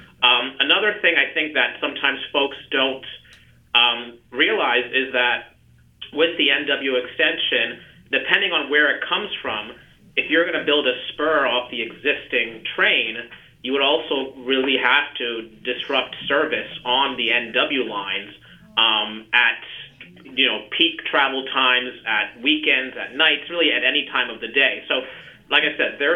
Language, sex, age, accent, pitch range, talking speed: English, male, 30-49, American, 125-160 Hz, 160 wpm